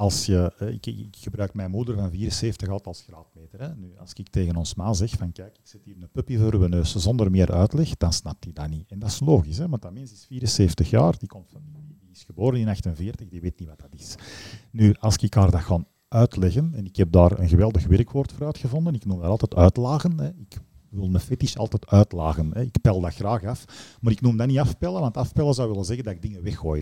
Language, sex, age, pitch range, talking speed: Dutch, male, 40-59, 90-120 Hz, 245 wpm